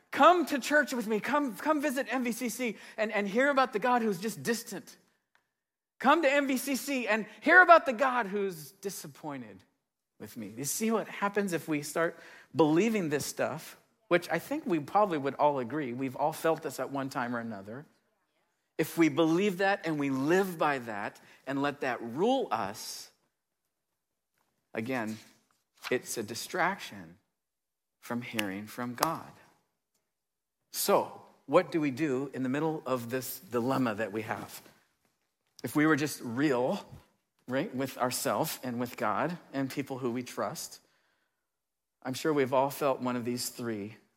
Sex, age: male, 50-69